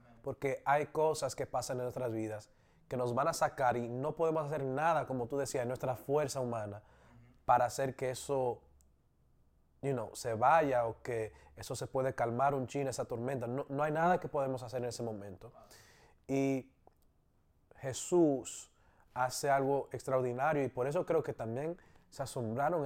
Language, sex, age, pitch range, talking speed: English, male, 20-39, 115-135 Hz, 170 wpm